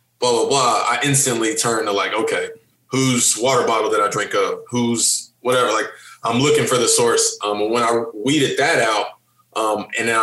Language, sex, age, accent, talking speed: English, male, 20-39, American, 200 wpm